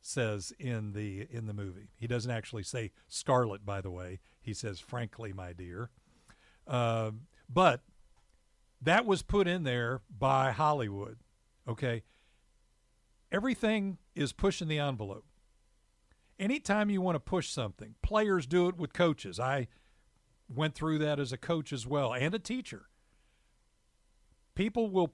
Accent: American